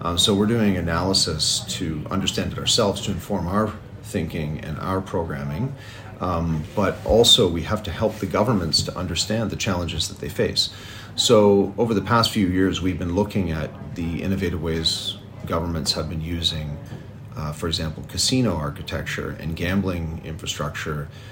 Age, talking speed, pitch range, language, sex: 40-59, 160 wpm, 80-105 Hz, English, male